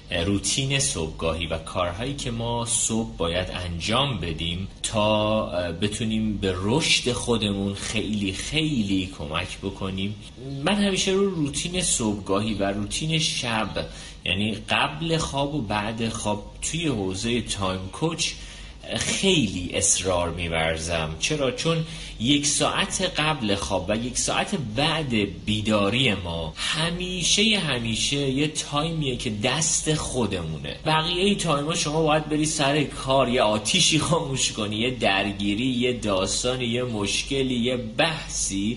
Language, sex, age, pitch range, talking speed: Persian, male, 30-49, 100-145 Hz, 120 wpm